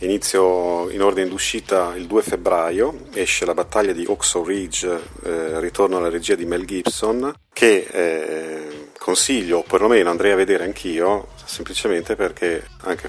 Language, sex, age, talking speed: Italian, male, 40-59, 145 wpm